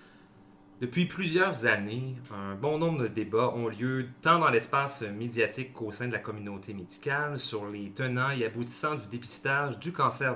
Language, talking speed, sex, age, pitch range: French, 170 wpm, male, 30-49, 100-130 Hz